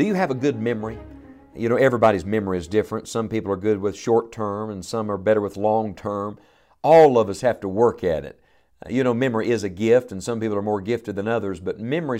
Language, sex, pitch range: English, male, 105-135 Hz